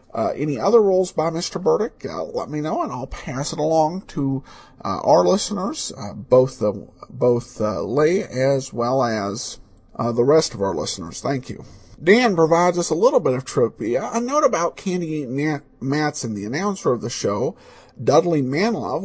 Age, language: 50-69, English